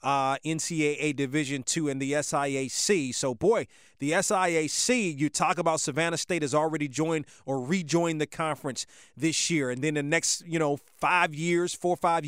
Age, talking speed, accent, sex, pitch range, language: 30-49, 175 wpm, American, male, 140-170 Hz, English